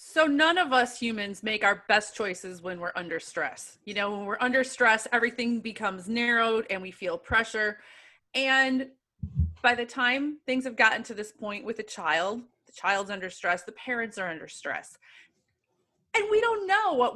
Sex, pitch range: female, 210-280 Hz